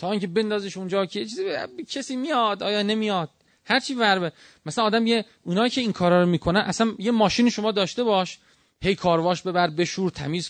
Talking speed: 200 wpm